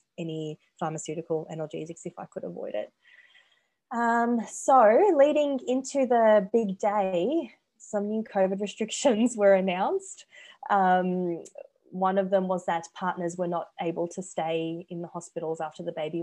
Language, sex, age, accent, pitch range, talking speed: English, female, 20-39, Australian, 165-195 Hz, 145 wpm